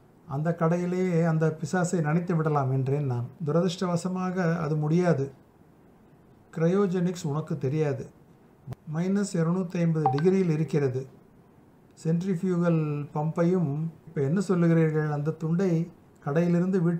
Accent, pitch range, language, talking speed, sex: native, 150-175 Hz, Tamil, 95 wpm, male